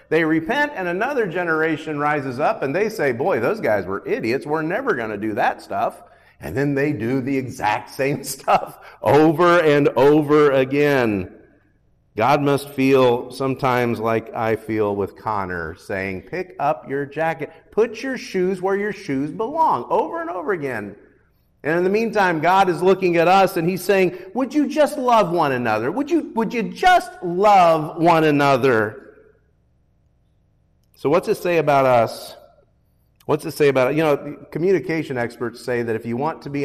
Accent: American